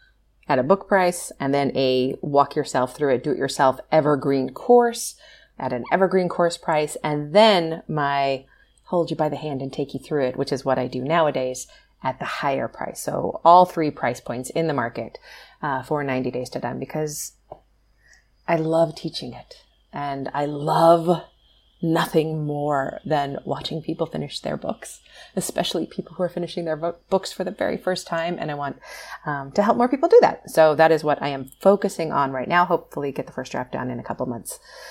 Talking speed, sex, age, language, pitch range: 200 wpm, female, 30-49, English, 140-190 Hz